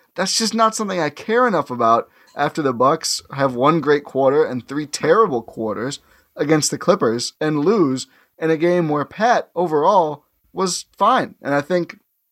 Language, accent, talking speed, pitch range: English, American, 170 wpm, 115-155 Hz